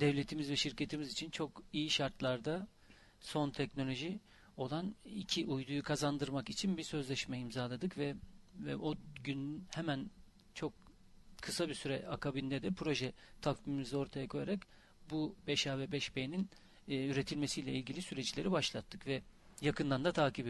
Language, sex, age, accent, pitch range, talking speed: Turkish, male, 40-59, native, 130-150 Hz, 130 wpm